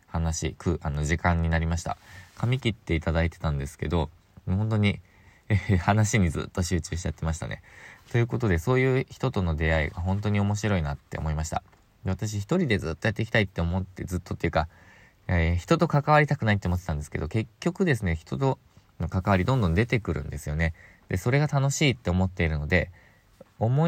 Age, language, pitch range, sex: 20-39, Japanese, 85-110 Hz, male